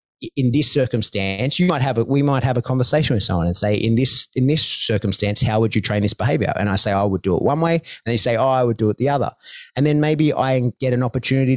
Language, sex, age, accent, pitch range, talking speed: English, male, 30-49, Australian, 105-135 Hz, 280 wpm